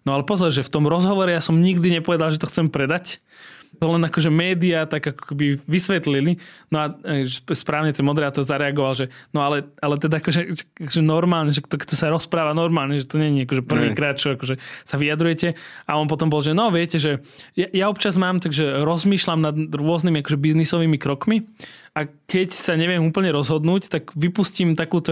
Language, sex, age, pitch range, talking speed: Slovak, male, 20-39, 145-170 Hz, 195 wpm